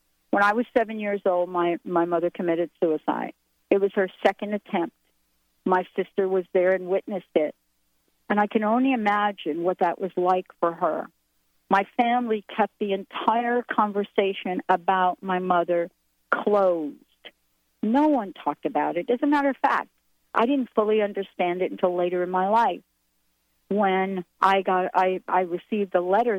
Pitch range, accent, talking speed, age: 170-205 Hz, American, 160 wpm, 50-69